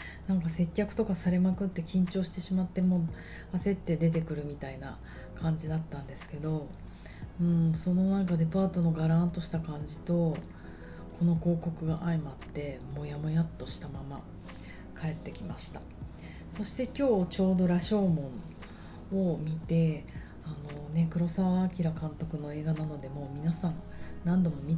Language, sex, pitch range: Japanese, female, 150-185 Hz